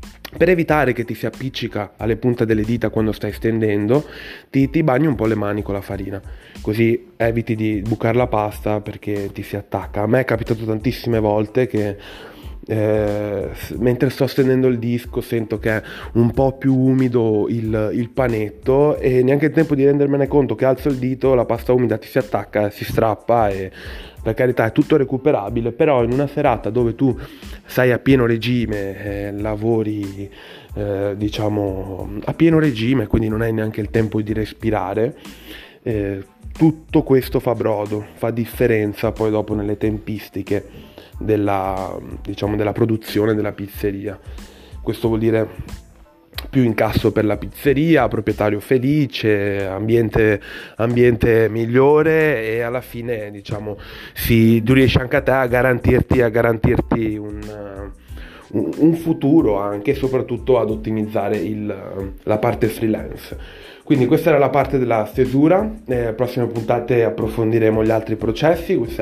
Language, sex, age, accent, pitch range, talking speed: Italian, male, 20-39, native, 105-125 Hz, 155 wpm